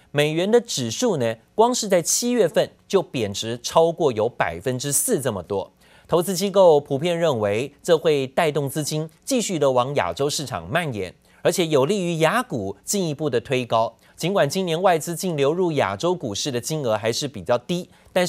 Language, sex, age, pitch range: Chinese, male, 30-49, 125-180 Hz